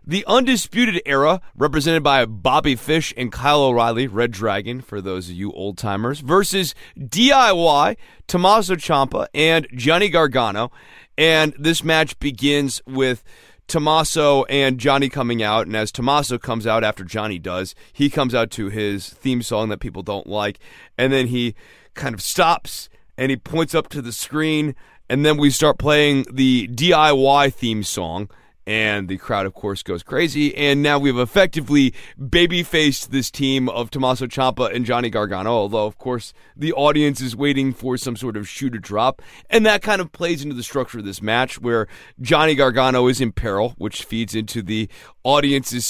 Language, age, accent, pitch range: English, 30-49, American, 115-150 Hz